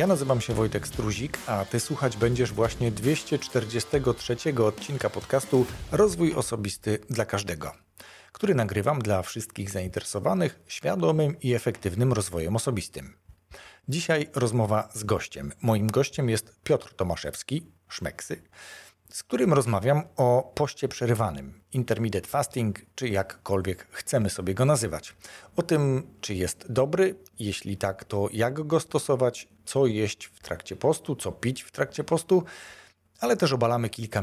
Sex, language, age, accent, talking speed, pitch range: male, Polish, 40-59, native, 135 wpm, 105-140 Hz